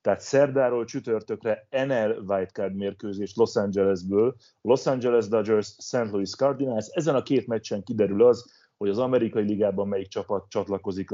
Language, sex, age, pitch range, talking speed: Hungarian, male, 30-49, 100-115 Hz, 150 wpm